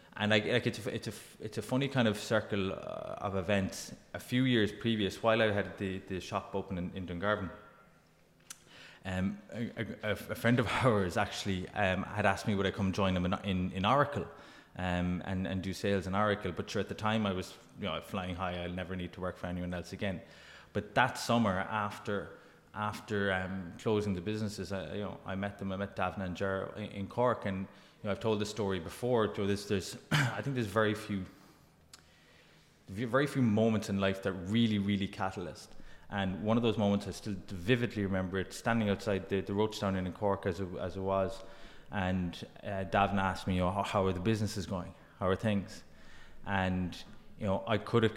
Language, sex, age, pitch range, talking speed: English, male, 20-39, 95-110 Hz, 210 wpm